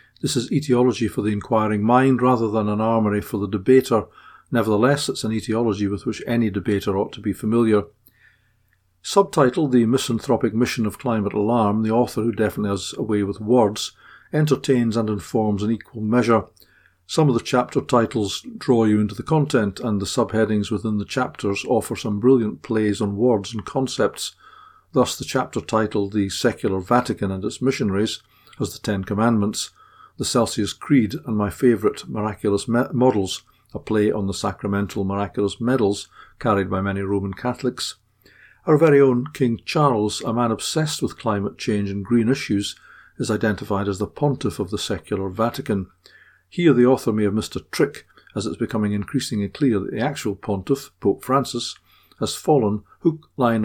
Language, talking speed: English, 170 wpm